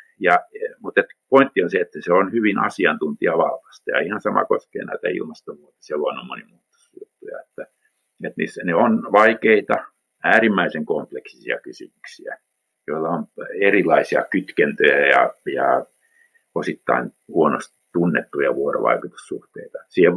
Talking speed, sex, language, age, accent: 115 wpm, male, Finnish, 50-69, native